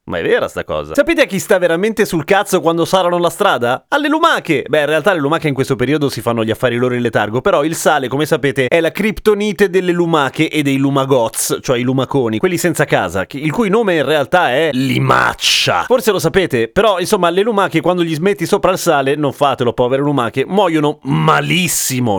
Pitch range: 130-190 Hz